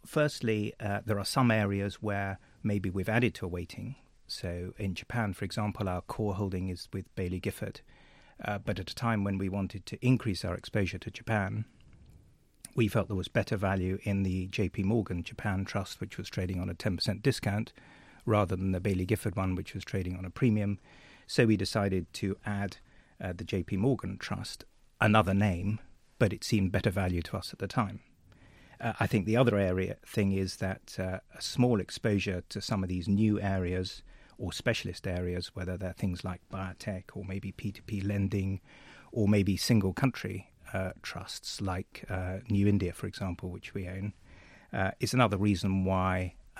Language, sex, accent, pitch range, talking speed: English, male, British, 95-110 Hz, 185 wpm